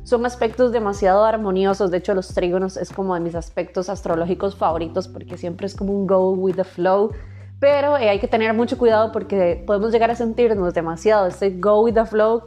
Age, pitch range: 20-39, 190-245 Hz